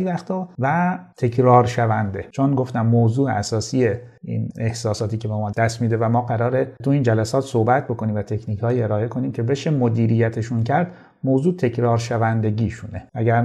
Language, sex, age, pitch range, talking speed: Persian, male, 30-49, 110-140 Hz, 155 wpm